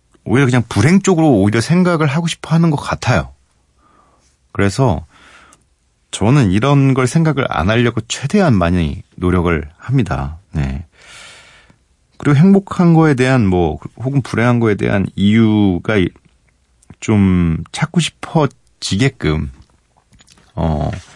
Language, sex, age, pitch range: Korean, male, 40-59, 85-125 Hz